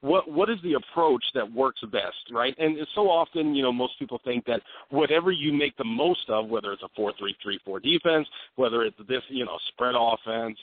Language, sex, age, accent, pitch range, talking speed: English, male, 40-59, American, 120-145 Hz, 230 wpm